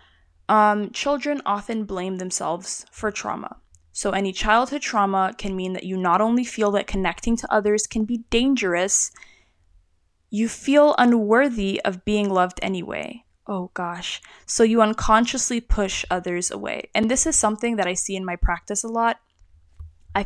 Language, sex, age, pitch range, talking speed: English, female, 10-29, 180-215 Hz, 155 wpm